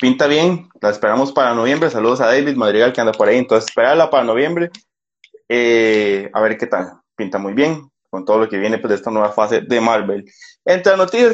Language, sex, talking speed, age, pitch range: Spanish, male, 210 wpm, 20-39, 120-180 Hz